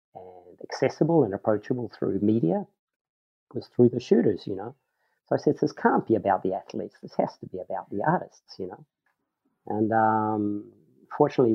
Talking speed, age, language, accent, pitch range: 170 wpm, 40-59, English, Australian, 100-120 Hz